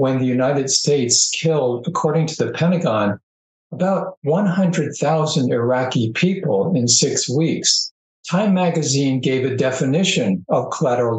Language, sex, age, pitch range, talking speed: English, male, 60-79, 130-165 Hz, 125 wpm